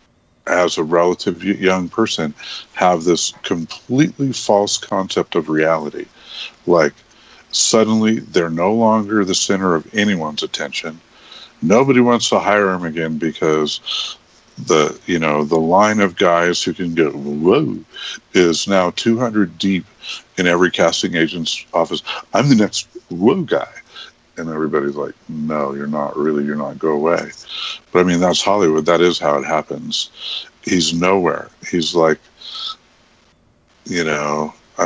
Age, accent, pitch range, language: 50-69, American, 80-100 Hz, English